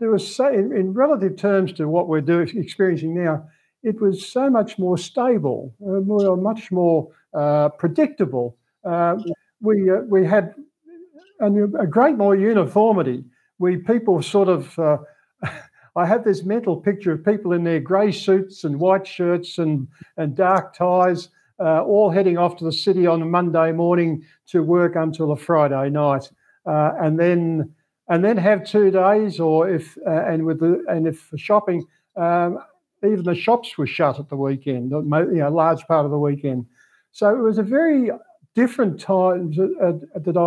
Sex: male